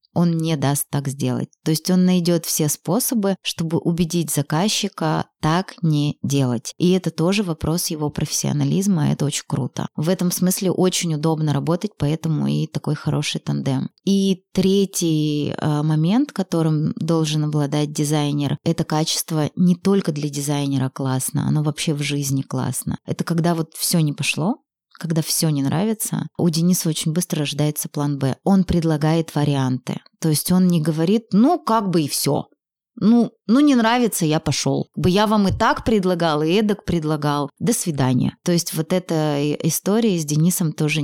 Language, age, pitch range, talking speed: Russian, 20-39, 150-185 Hz, 165 wpm